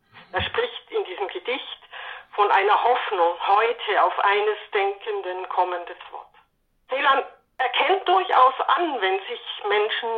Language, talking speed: German, 125 wpm